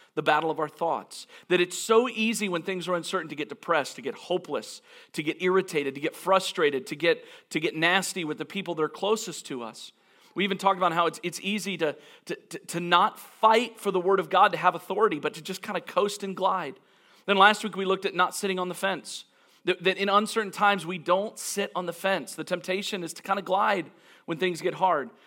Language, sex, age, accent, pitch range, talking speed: English, male, 40-59, American, 155-195 Hz, 240 wpm